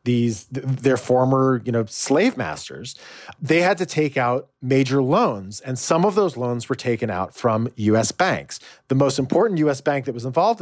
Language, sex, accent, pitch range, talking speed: English, male, American, 130-160 Hz, 185 wpm